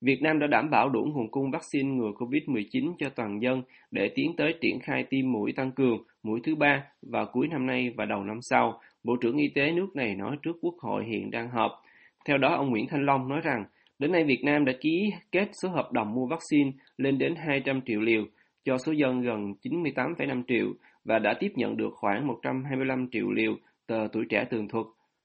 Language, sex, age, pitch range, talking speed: Vietnamese, male, 20-39, 120-145 Hz, 220 wpm